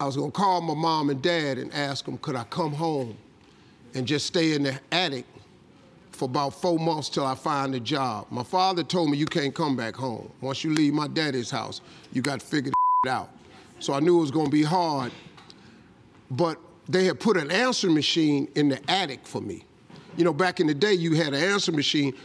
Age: 40-59